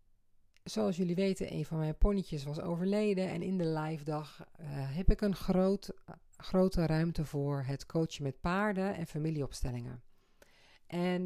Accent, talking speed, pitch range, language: Dutch, 150 wpm, 150-190 Hz, Dutch